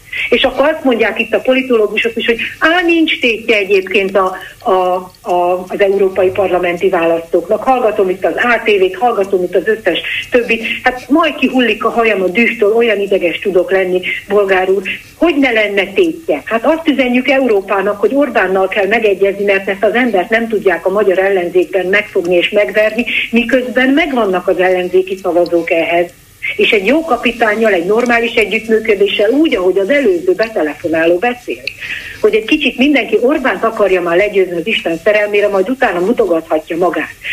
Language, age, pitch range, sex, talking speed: Hungarian, 60-79, 190-260 Hz, female, 160 wpm